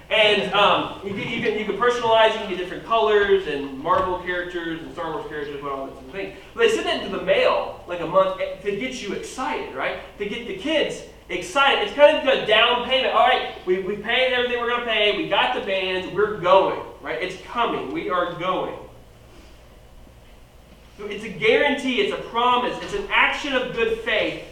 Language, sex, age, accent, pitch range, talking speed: English, male, 20-39, American, 200-265 Hz, 215 wpm